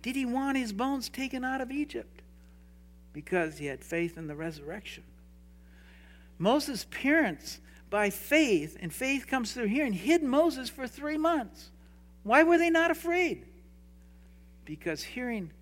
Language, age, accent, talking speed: English, 60-79, American, 140 wpm